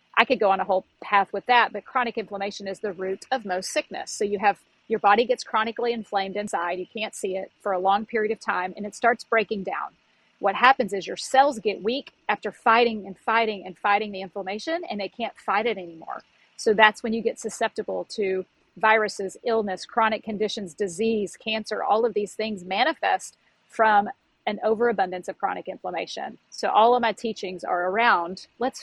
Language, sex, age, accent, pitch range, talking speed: English, female, 40-59, American, 200-240 Hz, 200 wpm